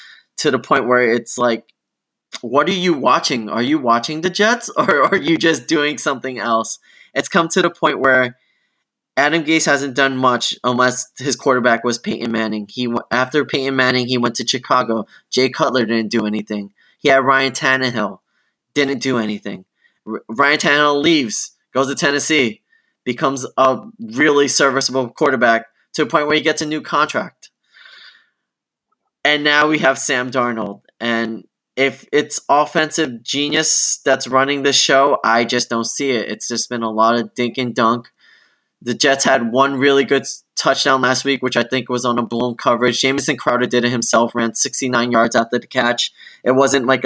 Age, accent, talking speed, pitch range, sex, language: 20-39, American, 180 wpm, 120-140 Hz, male, English